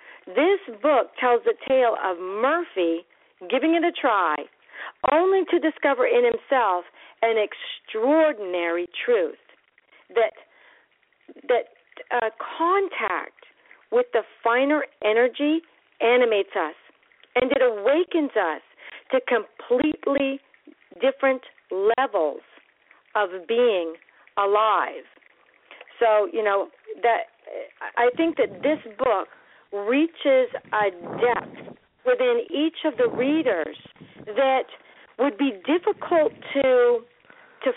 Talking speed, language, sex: 100 wpm, English, female